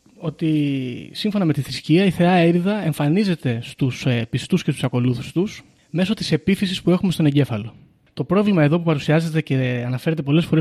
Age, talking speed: 30-49, 175 wpm